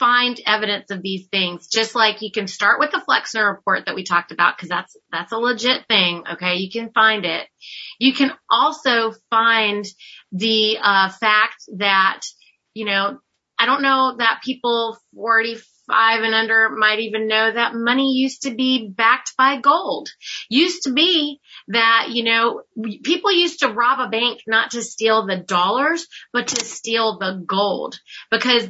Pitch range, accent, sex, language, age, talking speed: 205-255 Hz, American, female, English, 30-49, 170 wpm